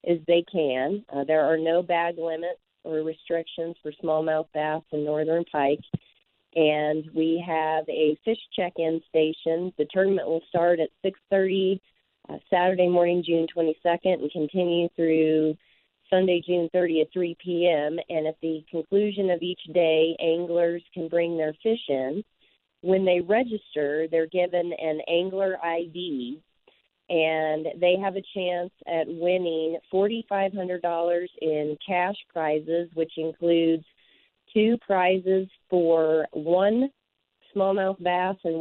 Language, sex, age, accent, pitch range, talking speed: English, female, 40-59, American, 160-185 Hz, 130 wpm